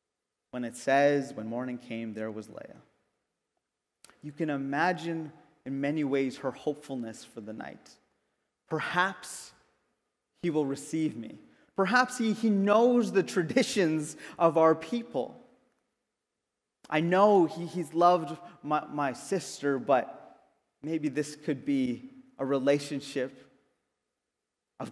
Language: English